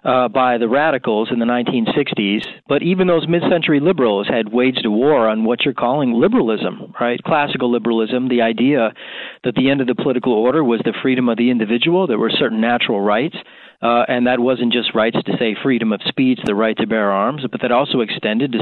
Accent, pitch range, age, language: American, 115-145 Hz, 40-59, English